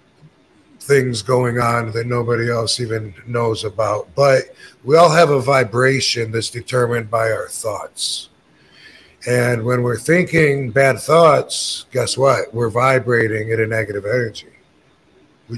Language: English